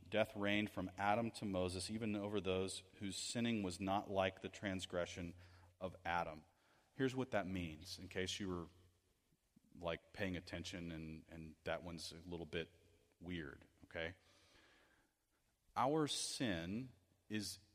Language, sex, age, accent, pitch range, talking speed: English, male, 40-59, American, 90-110 Hz, 140 wpm